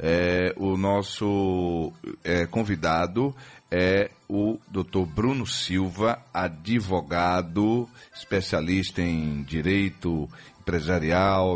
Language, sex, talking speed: Portuguese, male, 80 wpm